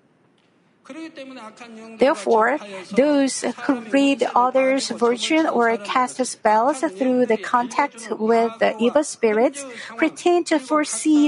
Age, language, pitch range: 50-69, Korean, 225-285 Hz